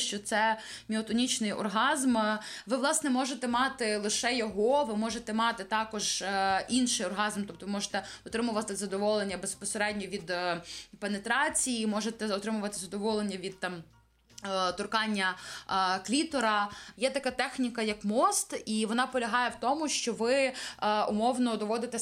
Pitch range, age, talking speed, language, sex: 195-235 Hz, 20-39, 120 wpm, Ukrainian, female